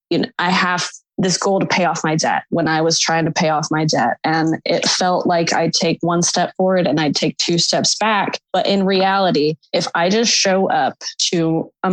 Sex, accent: female, American